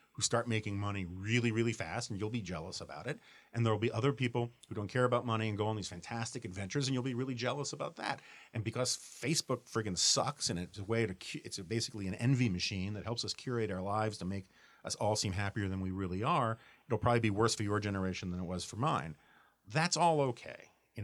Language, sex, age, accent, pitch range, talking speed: English, male, 40-59, American, 90-115 Hz, 240 wpm